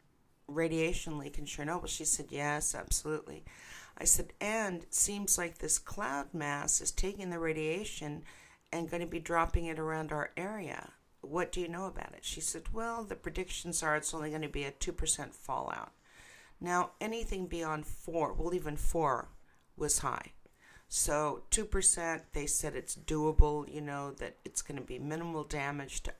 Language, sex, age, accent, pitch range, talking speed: English, female, 60-79, American, 150-175 Hz, 175 wpm